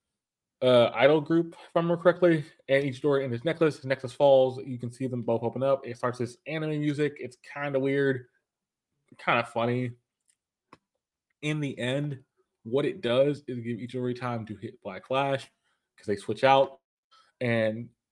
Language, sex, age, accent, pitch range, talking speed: English, male, 20-39, American, 120-155 Hz, 180 wpm